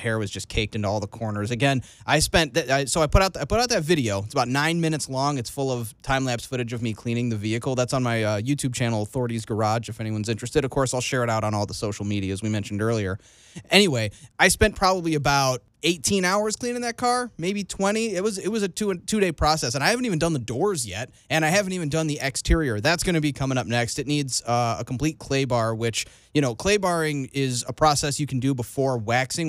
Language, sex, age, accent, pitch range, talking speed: English, male, 30-49, American, 120-160 Hz, 260 wpm